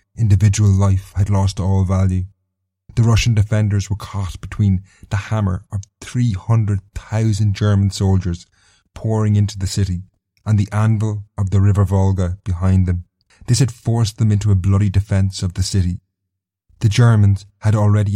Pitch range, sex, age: 95-105 Hz, male, 30-49